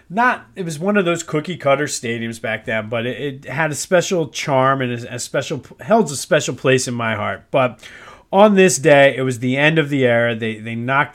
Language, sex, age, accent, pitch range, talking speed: English, male, 40-59, American, 110-145 Hz, 230 wpm